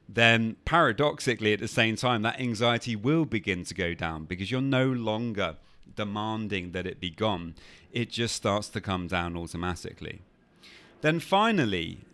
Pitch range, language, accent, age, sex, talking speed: 95-125 Hz, English, British, 30-49, male, 155 wpm